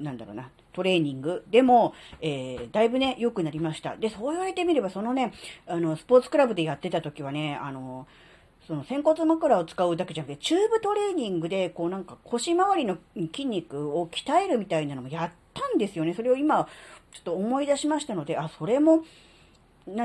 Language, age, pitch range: Japanese, 40-59, 150-250 Hz